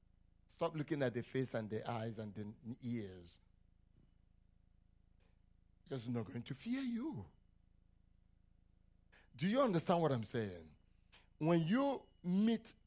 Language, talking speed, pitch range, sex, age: English, 120 wpm, 90-140 Hz, male, 50-69